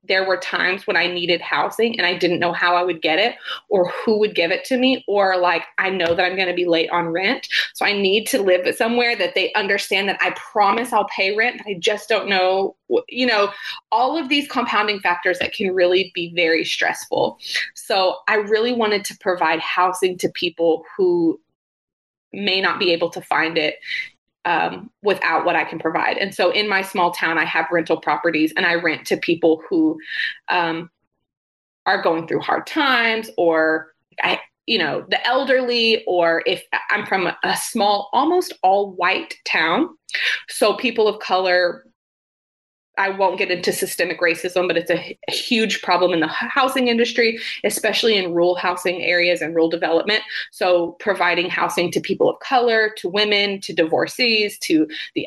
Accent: American